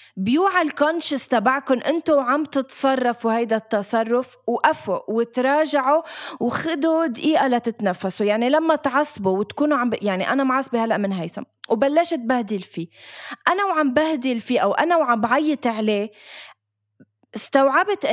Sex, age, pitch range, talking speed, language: female, 20-39, 215-290 Hz, 120 wpm, Arabic